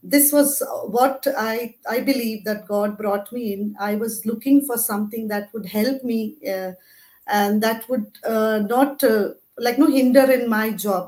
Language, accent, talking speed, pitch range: English, Indian, 180 wpm, 210-245 Hz